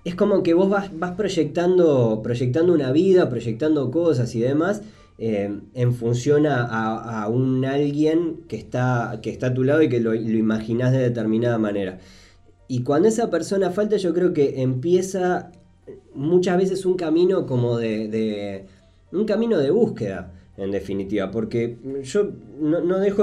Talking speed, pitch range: 165 wpm, 110-160 Hz